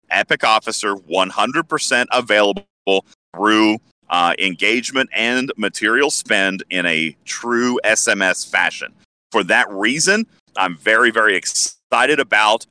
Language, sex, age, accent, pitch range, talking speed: English, male, 30-49, American, 95-115 Hz, 110 wpm